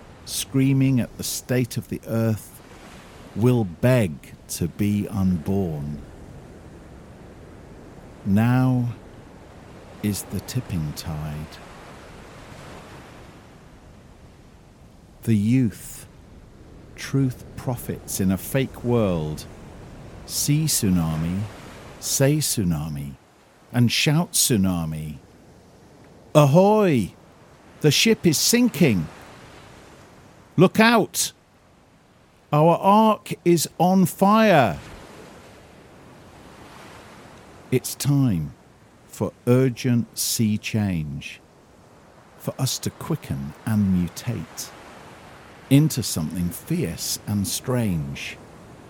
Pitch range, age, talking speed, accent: 95-135 Hz, 50-69, 75 wpm, British